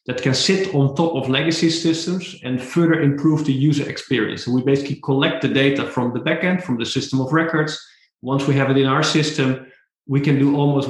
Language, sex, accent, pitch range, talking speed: English, male, Dutch, 130-160 Hz, 210 wpm